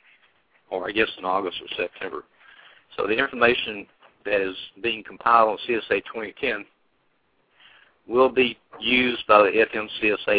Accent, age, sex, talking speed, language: American, 60-79, male, 135 wpm, English